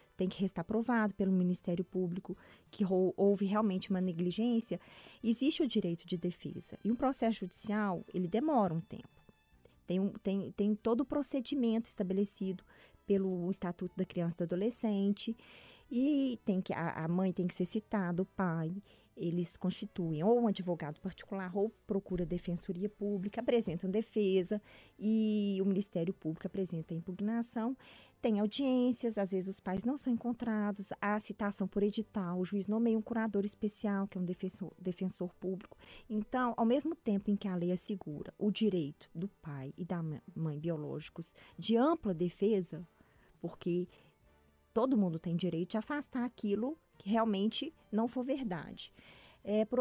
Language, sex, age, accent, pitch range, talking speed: Portuguese, female, 20-39, Brazilian, 180-225 Hz, 160 wpm